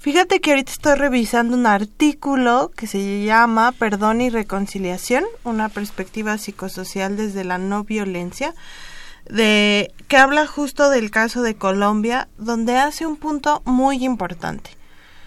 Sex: female